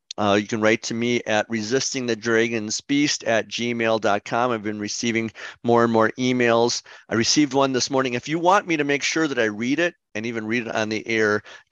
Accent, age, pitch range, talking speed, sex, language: American, 50-69, 105-120 Hz, 220 wpm, male, English